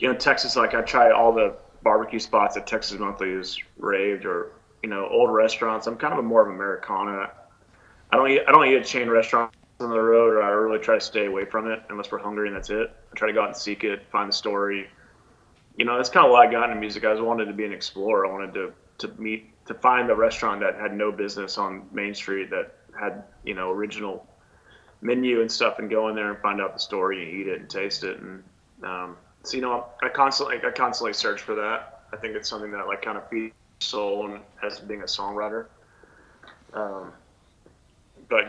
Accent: American